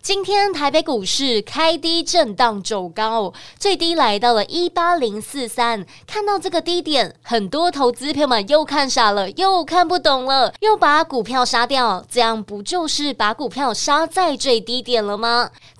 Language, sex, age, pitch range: Chinese, female, 20-39, 235-335 Hz